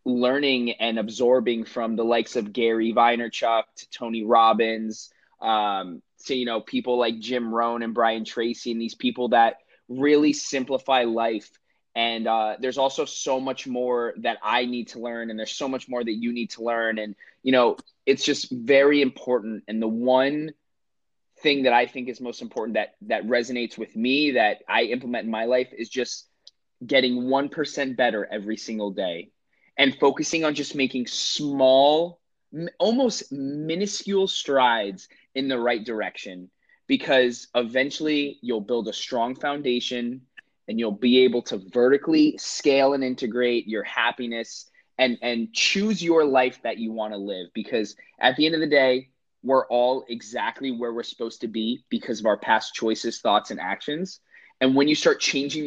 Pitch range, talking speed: 115-135 Hz, 170 wpm